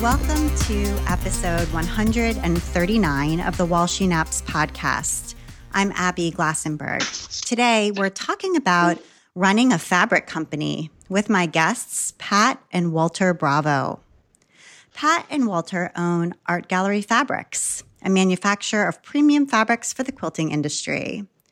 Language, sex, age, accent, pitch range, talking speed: English, female, 30-49, American, 170-225 Hz, 120 wpm